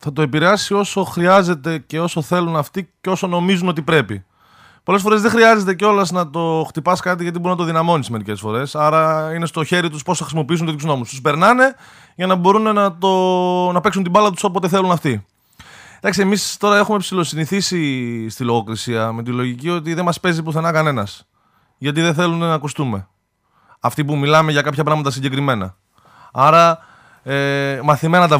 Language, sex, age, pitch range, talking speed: Greek, male, 20-39, 120-180 Hz, 180 wpm